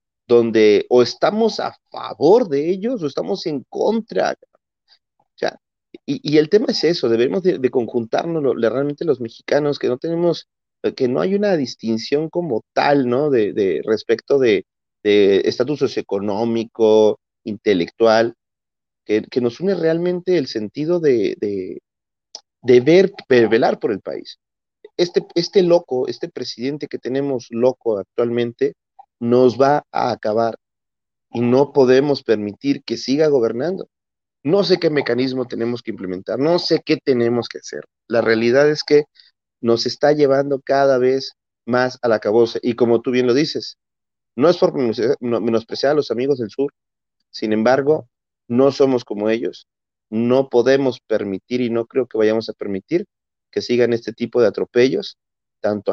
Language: Spanish